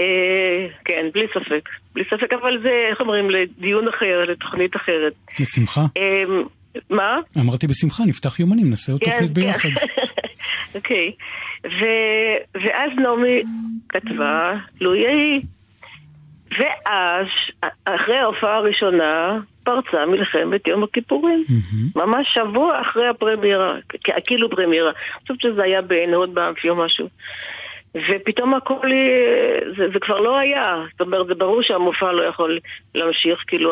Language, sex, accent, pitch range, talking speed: Hebrew, female, native, 170-225 Hz, 115 wpm